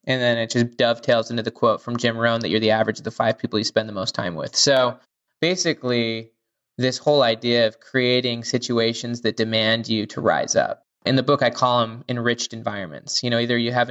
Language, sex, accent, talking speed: English, male, American, 225 wpm